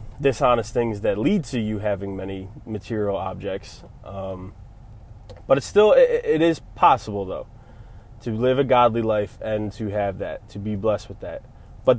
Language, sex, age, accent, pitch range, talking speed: English, male, 20-39, American, 105-120 Hz, 170 wpm